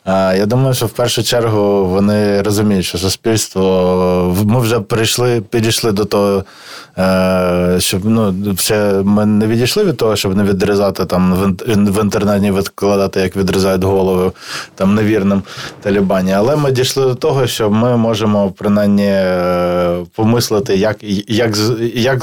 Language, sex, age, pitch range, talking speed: Ukrainian, male, 20-39, 100-115 Hz, 140 wpm